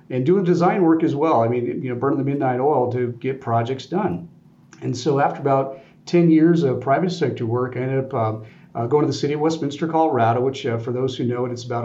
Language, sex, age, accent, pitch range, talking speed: English, male, 40-59, American, 120-160 Hz, 250 wpm